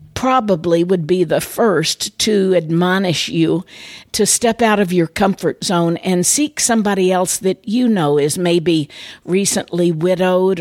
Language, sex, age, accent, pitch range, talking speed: English, female, 50-69, American, 170-200 Hz, 145 wpm